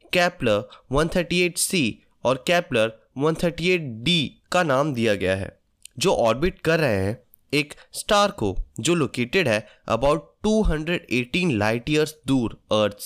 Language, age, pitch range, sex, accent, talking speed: Hindi, 20-39, 115-180 Hz, male, native, 125 wpm